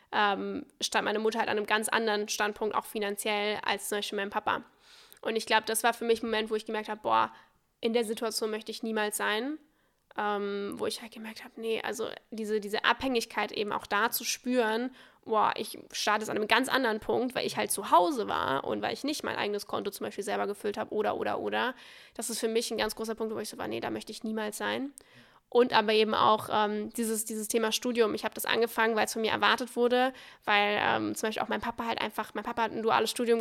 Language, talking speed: German, 240 wpm